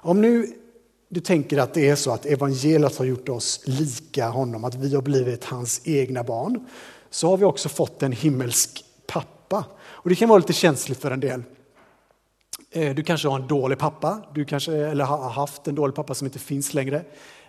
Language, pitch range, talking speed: Swedish, 135-160 Hz, 195 wpm